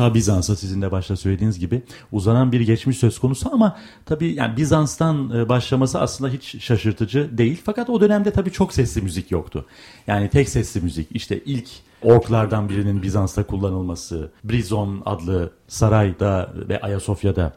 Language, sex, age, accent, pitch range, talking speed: Turkish, male, 40-59, native, 100-130 Hz, 150 wpm